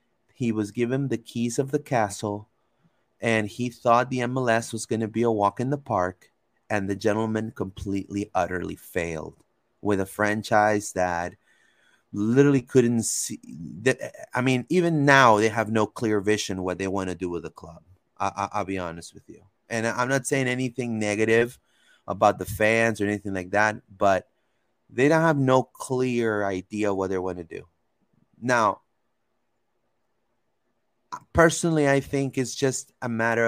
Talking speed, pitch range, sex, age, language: 165 wpm, 100-120 Hz, male, 30-49, English